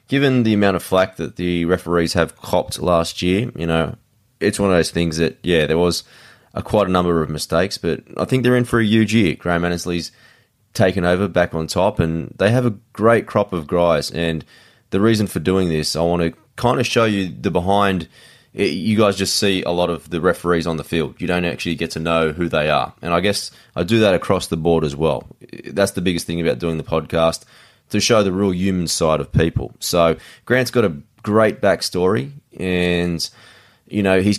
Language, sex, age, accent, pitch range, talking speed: English, male, 20-39, Australian, 80-100 Hz, 220 wpm